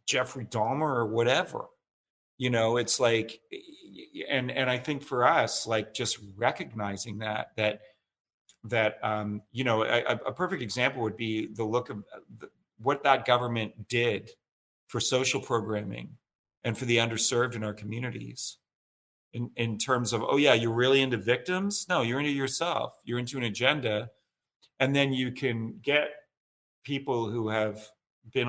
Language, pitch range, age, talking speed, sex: English, 110-130 Hz, 40-59, 155 wpm, male